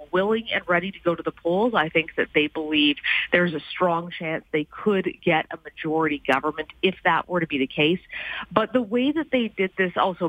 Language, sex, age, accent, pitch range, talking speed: English, female, 40-59, American, 155-200 Hz, 220 wpm